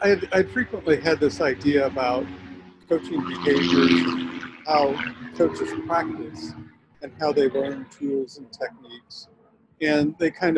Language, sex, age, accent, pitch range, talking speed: German, male, 50-69, American, 130-175 Hz, 120 wpm